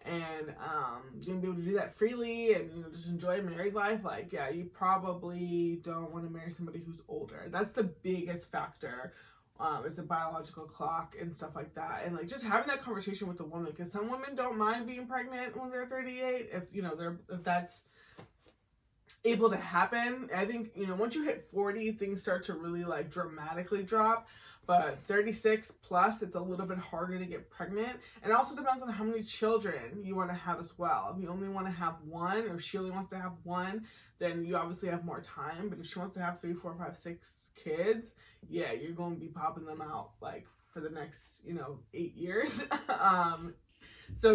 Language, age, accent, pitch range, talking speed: English, 20-39, American, 170-220 Hz, 210 wpm